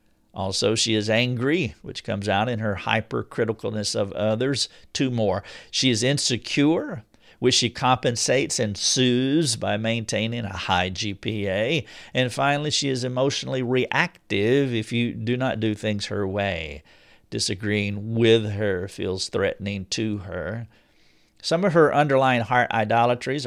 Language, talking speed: English, 140 wpm